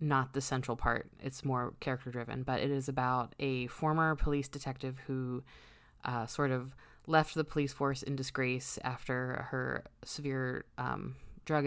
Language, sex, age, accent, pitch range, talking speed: English, female, 20-39, American, 125-140 Hz, 160 wpm